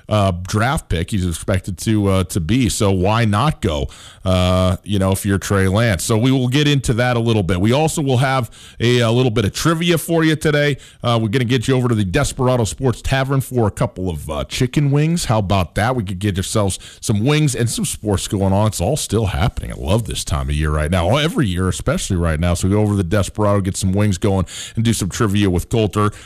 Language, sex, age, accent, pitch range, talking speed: English, male, 40-59, American, 95-125 Hz, 250 wpm